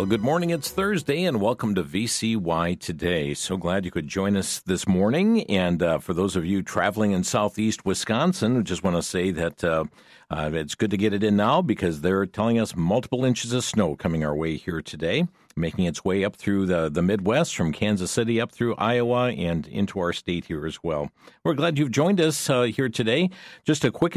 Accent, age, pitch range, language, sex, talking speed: American, 50-69, 90-120 Hz, English, male, 220 wpm